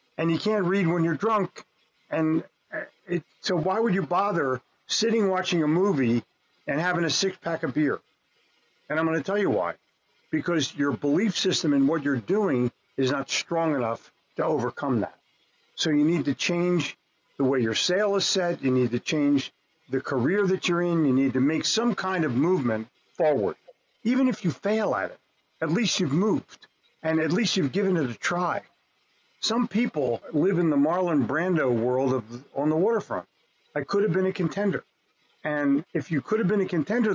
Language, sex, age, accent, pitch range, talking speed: English, male, 50-69, American, 145-195 Hz, 190 wpm